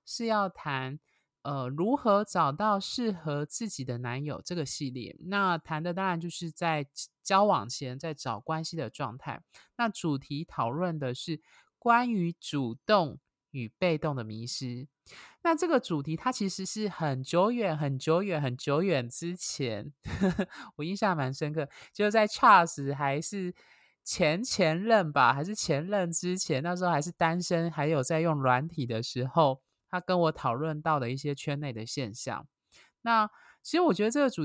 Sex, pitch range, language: male, 140-185 Hz, Chinese